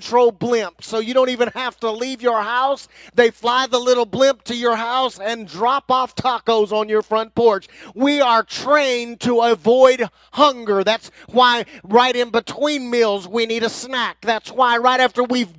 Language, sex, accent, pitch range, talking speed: English, male, American, 195-245 Hz, 180 wpm